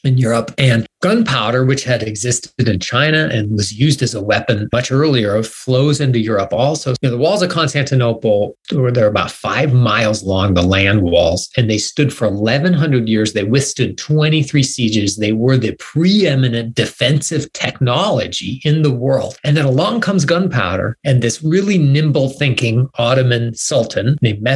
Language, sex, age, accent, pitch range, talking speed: English, male, 40-59, American, 110-145 Hz, 160 wpm